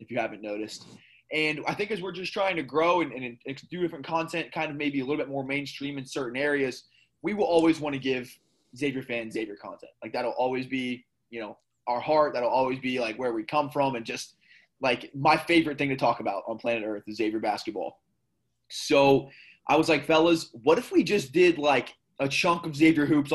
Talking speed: 225 wpm